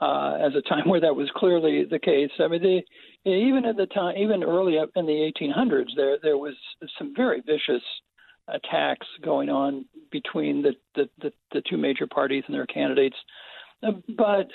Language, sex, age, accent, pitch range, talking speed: English, male, 60-79, American, 170-240 Hz, 180 wpm